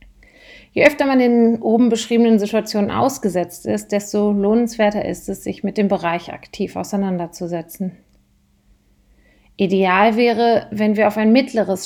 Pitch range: 190-225 Hz